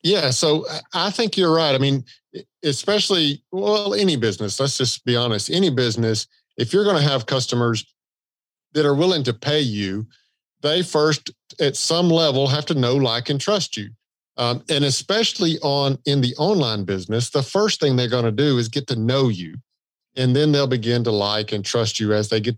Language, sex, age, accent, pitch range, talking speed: English, male, 50-69, American, 120-155 Hz, 195 wpm